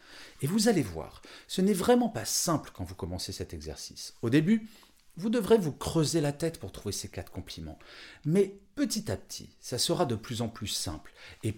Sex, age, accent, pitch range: male, 40-59, French, 95-150 Hz